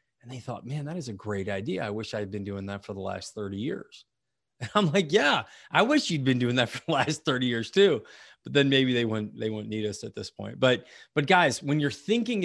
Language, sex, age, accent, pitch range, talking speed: English, male, 30-49, American, 115-145 Hz, 260 wpm